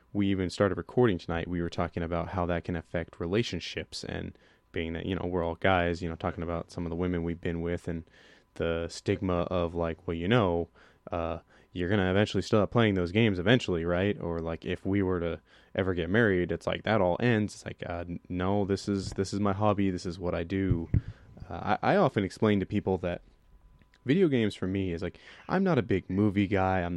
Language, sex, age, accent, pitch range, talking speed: English, male, 20-39, American, 85-105 Hz, 225 wpm